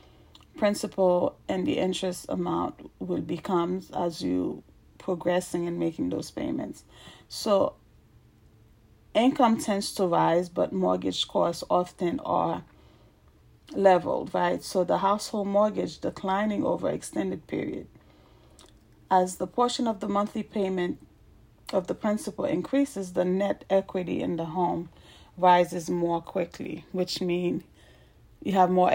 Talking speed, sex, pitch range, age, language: 120 wpm, female, 175-205 Hz, 30-49, English